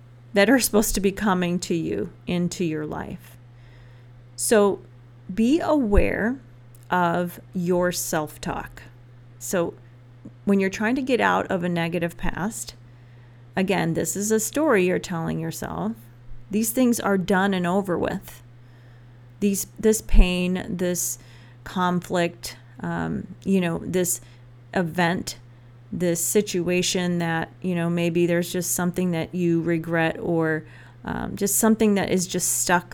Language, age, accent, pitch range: English, 40-59, American, 120-195 Hz